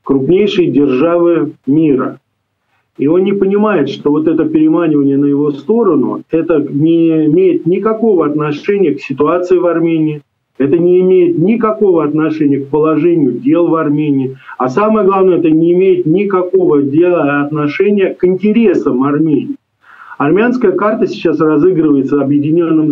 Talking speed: 130 wpm